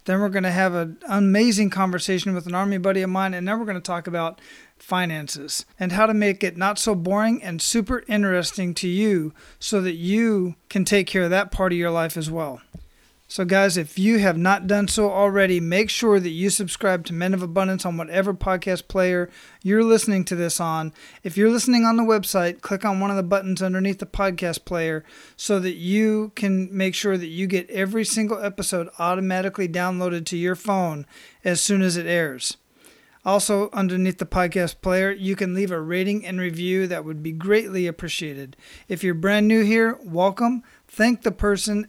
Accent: American